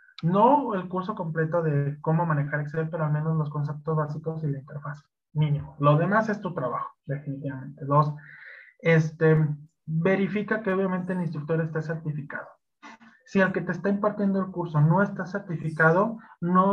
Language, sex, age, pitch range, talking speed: Spanish, male, 20-39, 150-175 Hz, 160 wpm